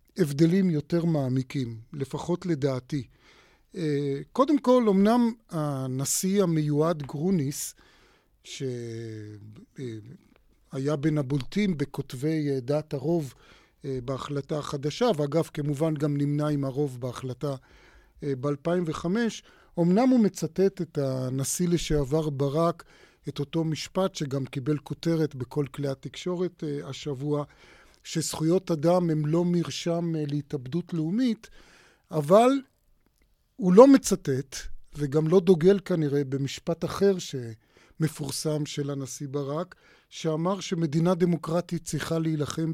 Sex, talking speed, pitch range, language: male, 100 wpm, 140-170 Hz, Hebrew